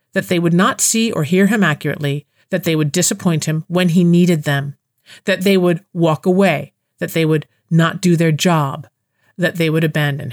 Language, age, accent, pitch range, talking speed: English, 50-69, American, 155-195 Hz, 200 wpm